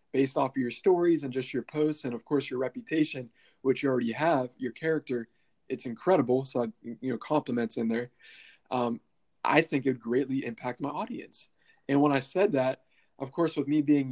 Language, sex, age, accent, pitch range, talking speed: English, male, 20-39, American, 120-140 Hz, 200 wpm